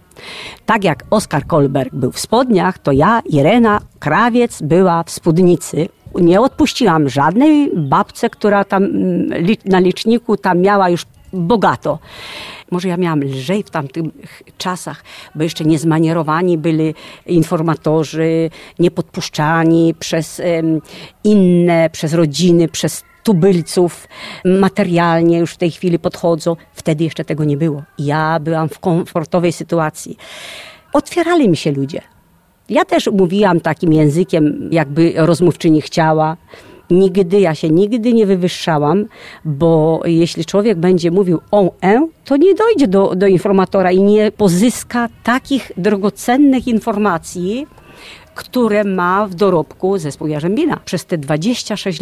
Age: 50-69